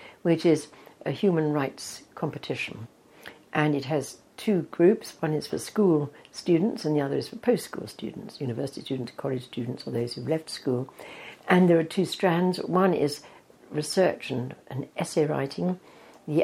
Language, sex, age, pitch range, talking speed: English, female, 60-79, 140-180 Hz, 165 wpm